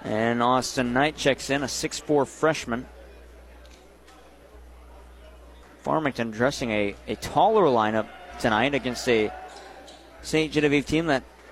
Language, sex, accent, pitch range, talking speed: English, male, American, 125-150 Hz, 110 wpm